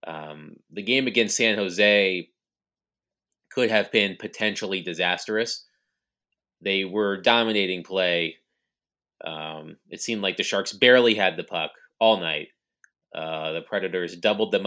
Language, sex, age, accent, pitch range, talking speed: English, male, 30-49, American, 85-105 Hz, 130 wpm